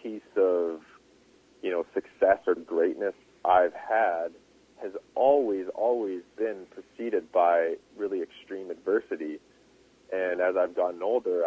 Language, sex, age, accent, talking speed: English, male, 40-59, American, 120 wpm